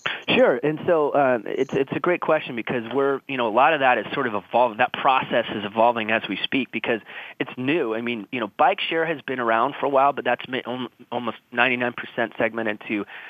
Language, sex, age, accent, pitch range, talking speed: English, male, 30-49, American, 110-135 Hz, 230 wpm